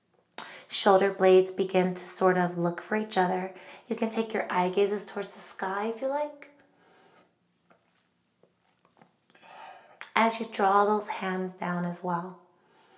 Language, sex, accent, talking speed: English, female, American, 140 wpm